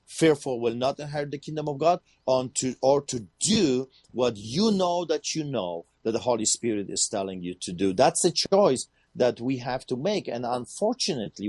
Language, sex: English, male